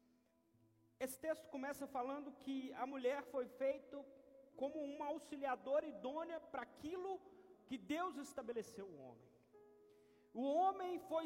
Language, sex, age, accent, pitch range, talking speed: Portuguese, male, 40-59, Brazilian, 235-330 Hz, 125 wpm